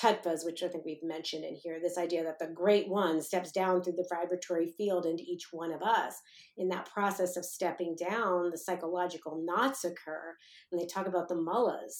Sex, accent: female, American